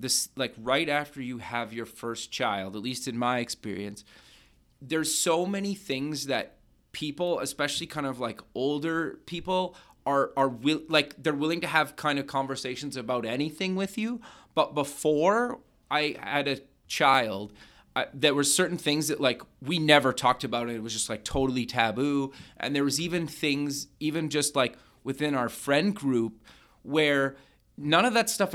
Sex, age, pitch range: male, 30-49, 120-150 Hz